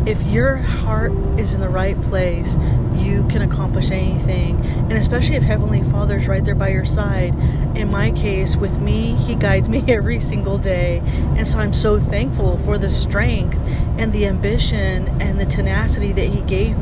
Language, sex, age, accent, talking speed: English, female, 30-49, American, 180 wpm